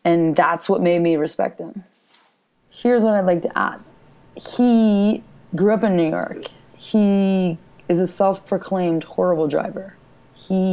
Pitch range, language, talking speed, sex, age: 145-185 Hz, English, 145 wpm, female, 20-39